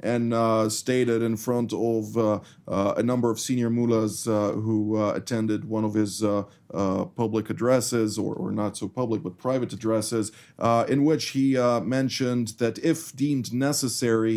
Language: English